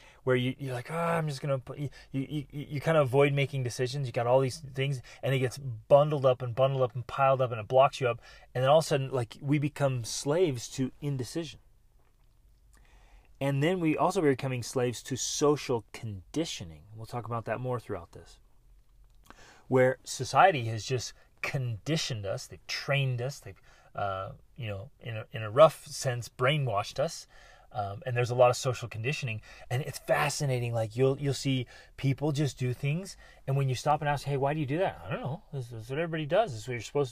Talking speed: 215 wpm